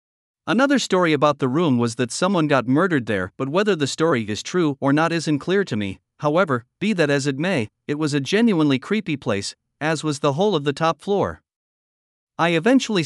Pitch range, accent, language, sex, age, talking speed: 130-170 Hz, American, English, male, 50-69, 205 wpm